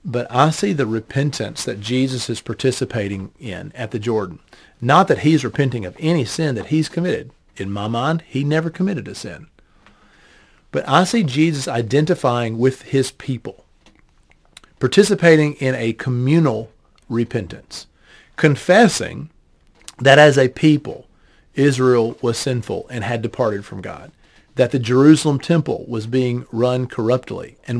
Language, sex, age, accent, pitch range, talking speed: English, male, 40-59, American, 115-145 Hz, 140 wpm